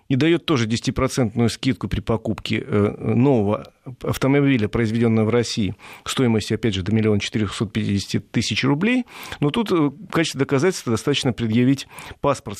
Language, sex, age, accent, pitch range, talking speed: Russian, male, 40-59, native, 110-145 Hz, 140 wpm